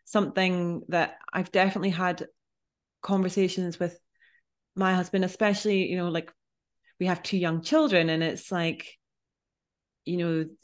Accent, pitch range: British, 160-195 Hz